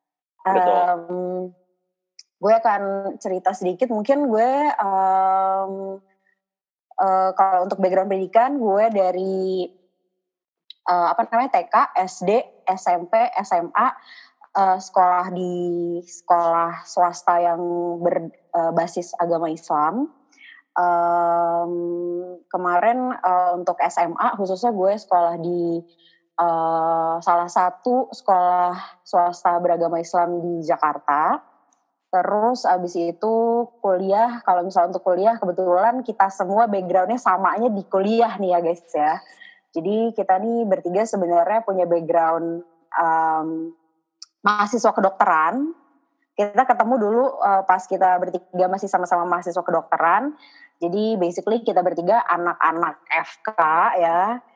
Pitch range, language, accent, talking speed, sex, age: 175-215 Hz, Indonesian, native, 105 wpm, female, 20-39